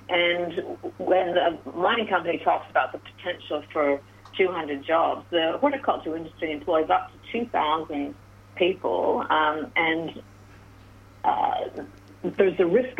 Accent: American